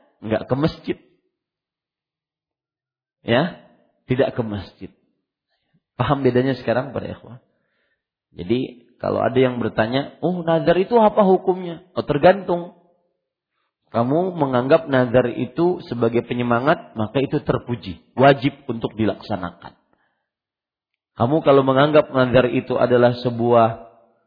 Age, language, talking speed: 40-59, English, 105 wpm